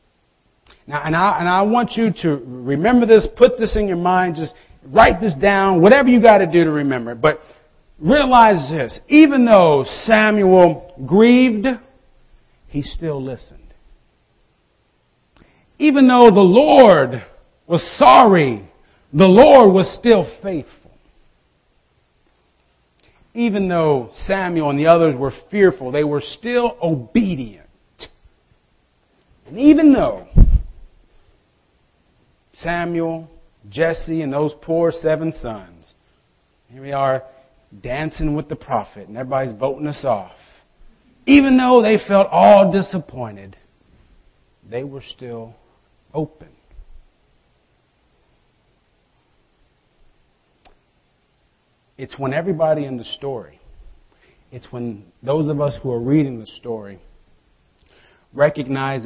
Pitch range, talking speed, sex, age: 125-195 Hz, 110 wpm, male, 50-69